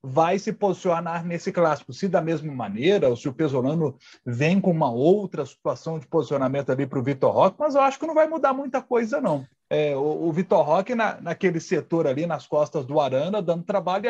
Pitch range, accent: 155-225 Hz, Brazilian